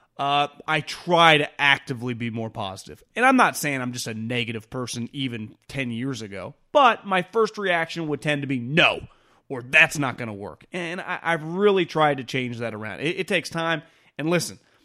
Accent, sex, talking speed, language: American, male, 205 wpm, English